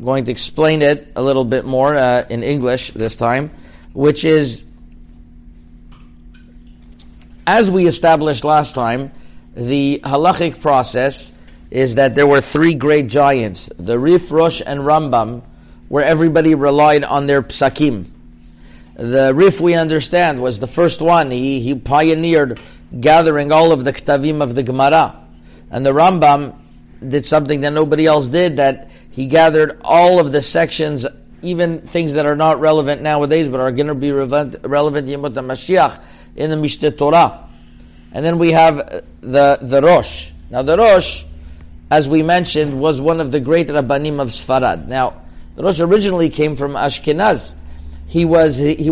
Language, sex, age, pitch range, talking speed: English, male, 50-69, 115-155 Hz, 155 wpm